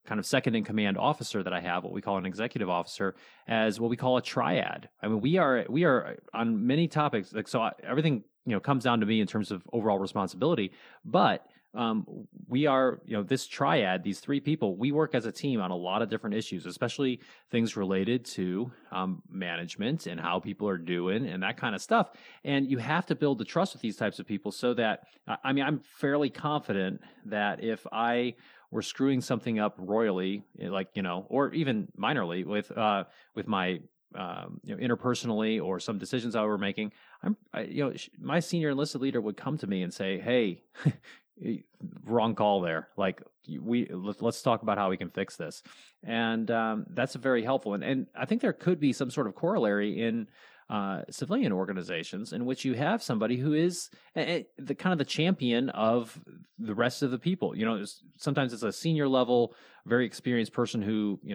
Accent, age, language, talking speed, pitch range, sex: American, 30-49, English, 205 wpm, 100-135 Hz, male